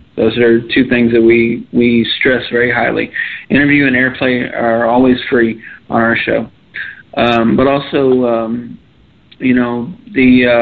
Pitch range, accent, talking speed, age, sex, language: 115-130 Hz, American, 145 wpm, 40-59, male, English